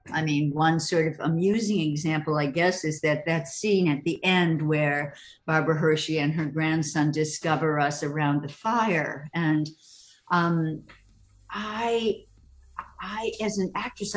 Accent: American